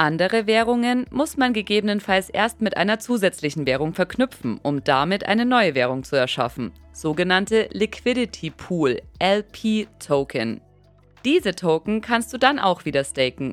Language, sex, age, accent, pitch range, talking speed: German, female, 30-49, German, 145-230 Hz, 135 wpm